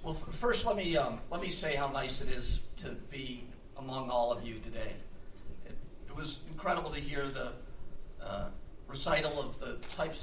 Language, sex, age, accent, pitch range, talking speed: English, male, 50-69, American, 120-145 Hz, 180 wpm